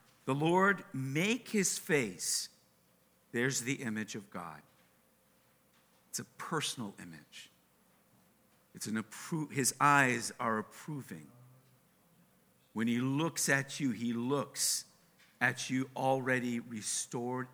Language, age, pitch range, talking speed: English, 50-69, 115-140 Hz, 110 wpm